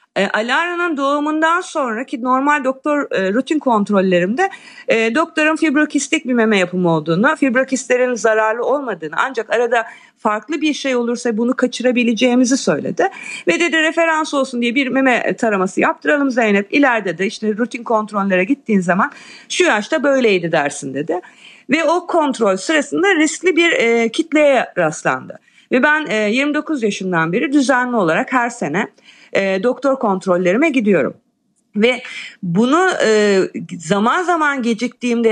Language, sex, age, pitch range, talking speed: Turkish, female, 50-69, 210-290 Hz, 135 wpm